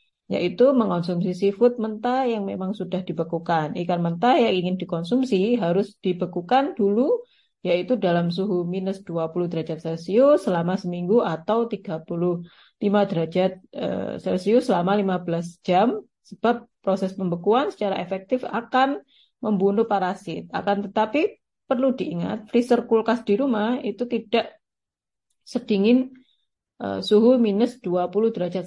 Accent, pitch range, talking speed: native, 185-235 Hz, 120 wpm